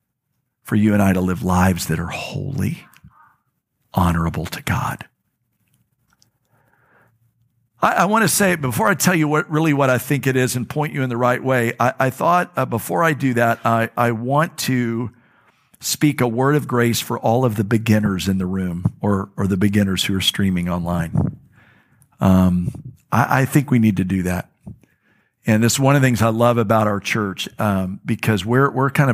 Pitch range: 105-135 Hz